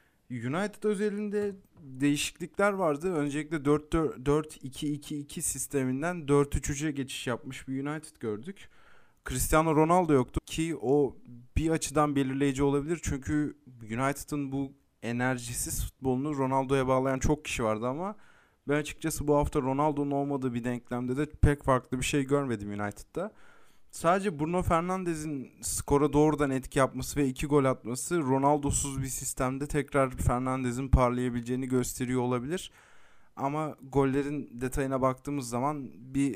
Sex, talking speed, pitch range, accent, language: male, 120 wpm, 125-145 Hz, native, Turkish